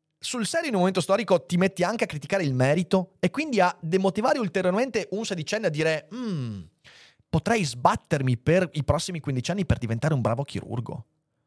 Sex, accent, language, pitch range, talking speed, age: male, native, Italian, 125-190 Hz, 180 wpm, 30-49